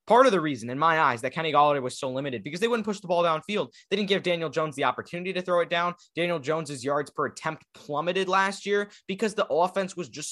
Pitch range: 150-190 Hz